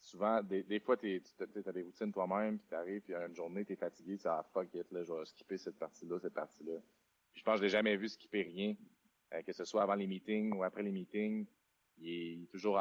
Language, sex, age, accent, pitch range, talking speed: French, male, 30-49, Canadian, 90-105 Hz, 250 wpm